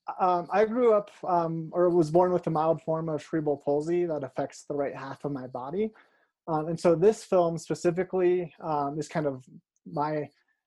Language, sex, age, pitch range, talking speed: English, male, 20-39, 140-175 Hz, 185 wpm